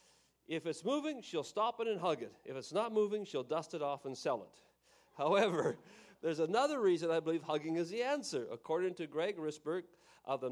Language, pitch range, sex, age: English, 145-200 Hz, male, 40-59